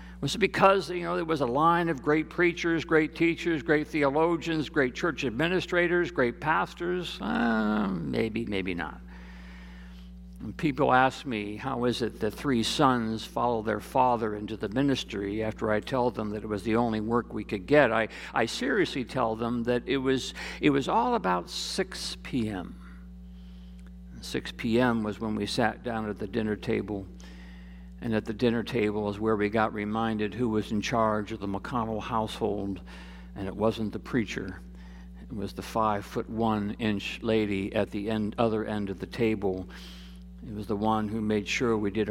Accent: American